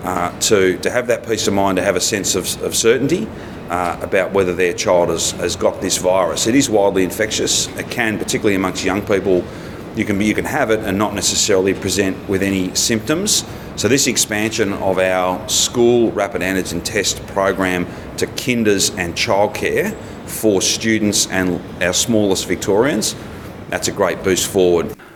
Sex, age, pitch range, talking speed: male, 40-59, 80-100 Hz, 175 wpm